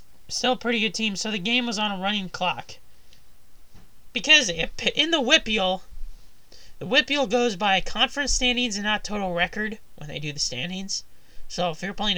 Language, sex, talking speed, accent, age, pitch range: English, male, 180 wpm, American, 20-39, 180-235 Hz